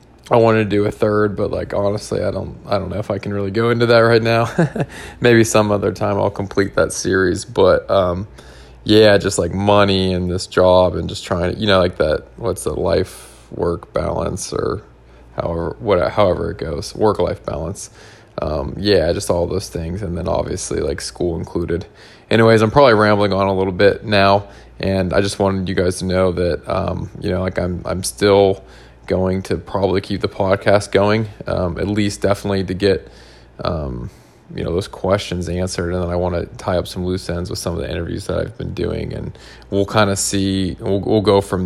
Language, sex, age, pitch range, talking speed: English, male, 20-39, 90-105 Hz, 210 wpm